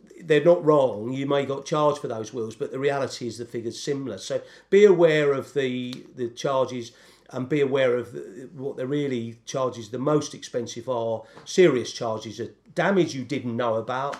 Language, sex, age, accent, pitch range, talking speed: English, male, 40-59, British, 125-160 Hz, 195 wpm